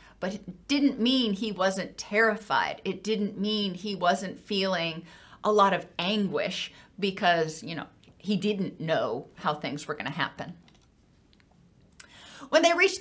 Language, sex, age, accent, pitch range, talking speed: English, female, 40-59, American, 200-260 Hz, 150 wpm